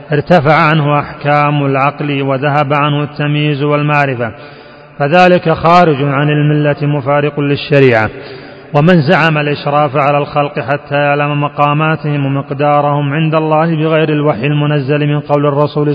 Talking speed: 115 wpm